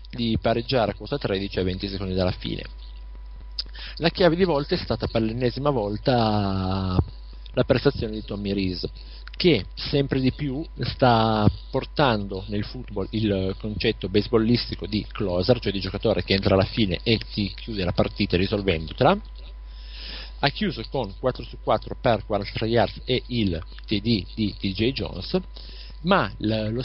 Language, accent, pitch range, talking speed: Italian, native, 95-120 Hz, 150 wpm